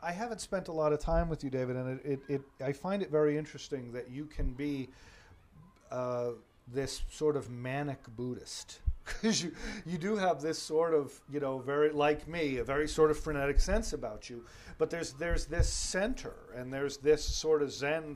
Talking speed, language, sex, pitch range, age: 195 wpm, English, male, 130-165 Hz, 40-59